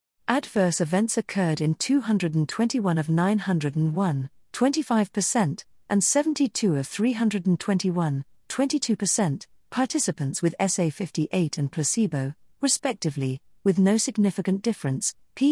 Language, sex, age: English, female, 50-69